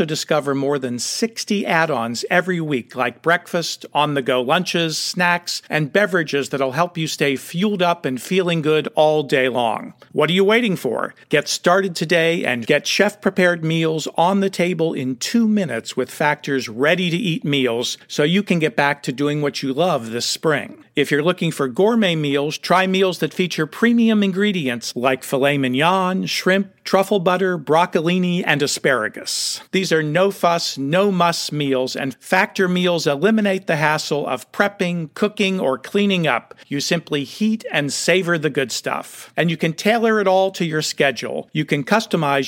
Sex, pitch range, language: male, 145-190 Hz, English